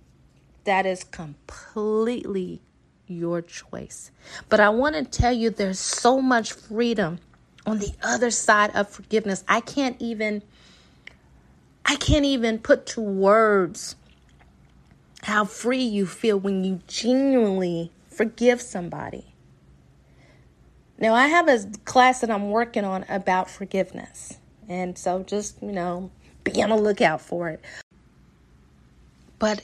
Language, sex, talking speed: English, female, 125 wpm